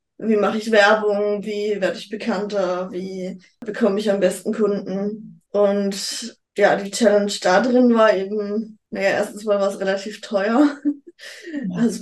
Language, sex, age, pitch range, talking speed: German, female, 20-39, 195-230 Hz, 150 wpm